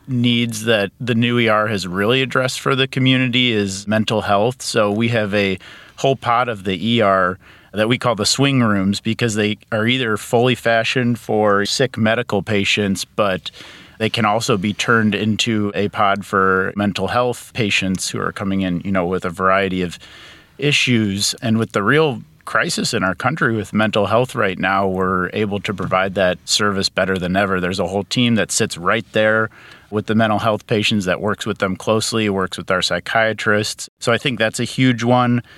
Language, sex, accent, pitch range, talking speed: English, male, American, 100-120 Hz, 190 wpm